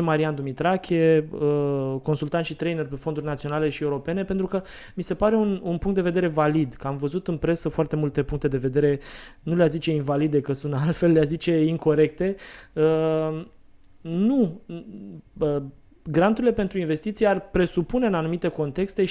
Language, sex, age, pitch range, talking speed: Romanian, male, 20-39, 150-185 Hz, 155 wpm